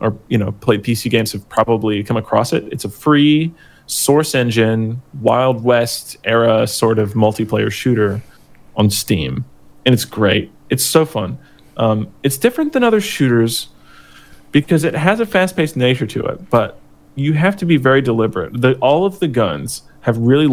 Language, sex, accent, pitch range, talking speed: English, male, American, 110-140 Hz, 165 wpm